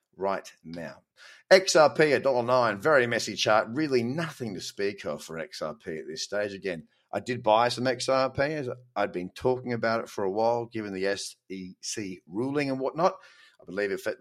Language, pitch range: English, 110-140 Hz